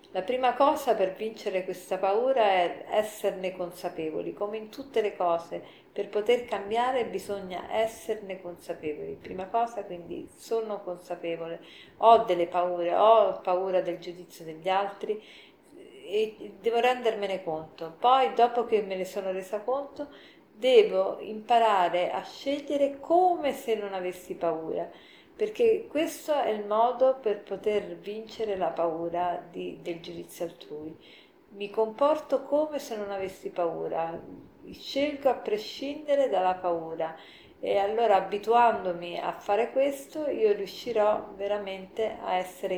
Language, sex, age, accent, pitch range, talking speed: Italian, female, 50-69, native, 180-240 Hz, 130 wpm